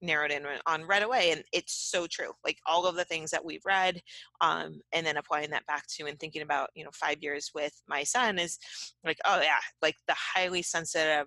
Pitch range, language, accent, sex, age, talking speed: 150-175 Hz, English, American, female, 30-49, 225 wpm